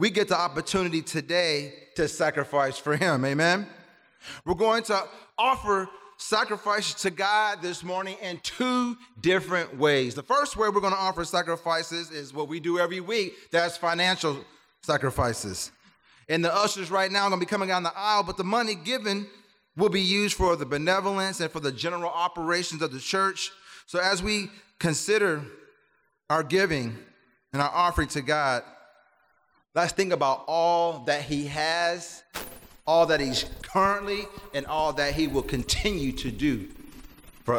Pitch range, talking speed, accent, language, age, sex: 145-195 Hz, 165 wpm, American, English, 30-49, male